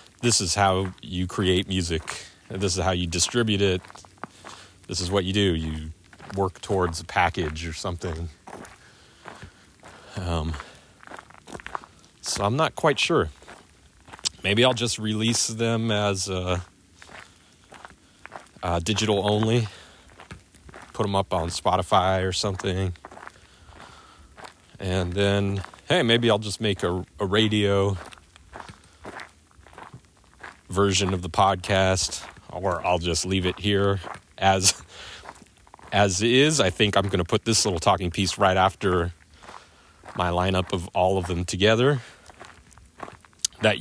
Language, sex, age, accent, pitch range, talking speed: English, male, 30-49, American, 90-105 Hz, 120 wpm